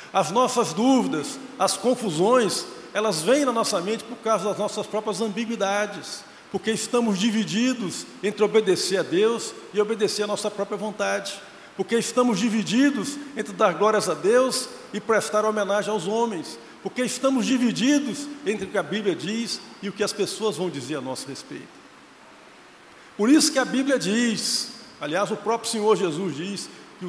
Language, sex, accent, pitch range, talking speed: Portuguese, male, Brazilian, 210-255 Hz, 165 wpm